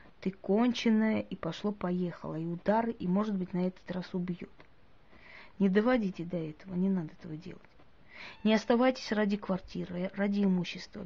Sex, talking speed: female, 145 wpm